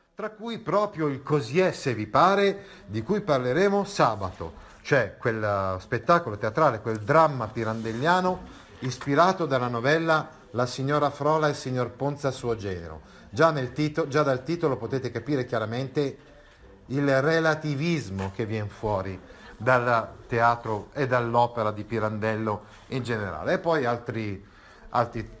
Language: Italian